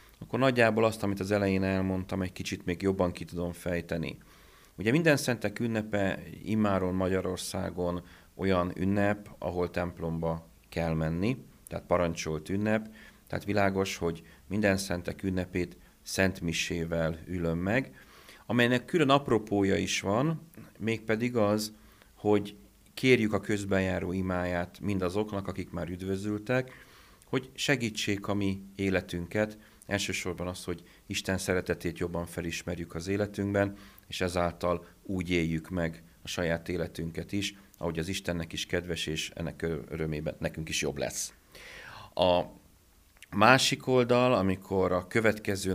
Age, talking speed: 40-59, 125 wpm